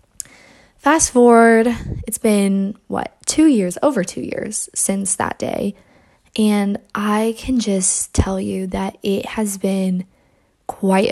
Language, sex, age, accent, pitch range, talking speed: English, female, 10-29, American, 195-250 Hz, 130 wpm